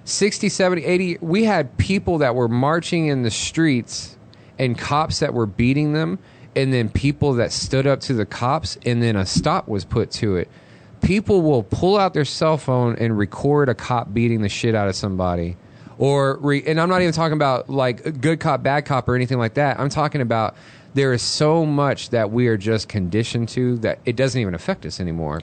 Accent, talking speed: American, 210 wpm